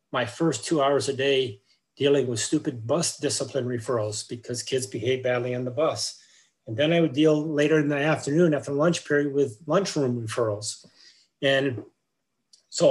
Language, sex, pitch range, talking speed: English, male, 120-150 Hz, 165 wpm